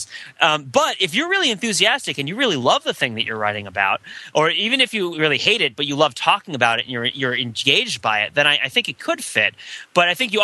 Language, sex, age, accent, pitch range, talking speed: English, male, 30-49, American, 130-180 Hz, 265 wpm